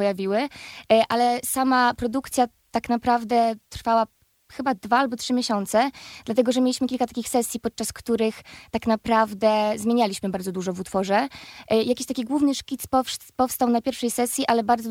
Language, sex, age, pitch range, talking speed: Polish, female, 20-39, 210-240 Hz, 145 wpm